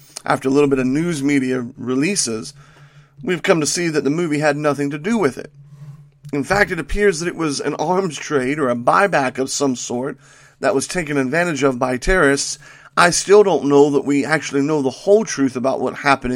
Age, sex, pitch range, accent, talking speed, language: 40-59, male, 135-155 Hz, American, 215 wpm, English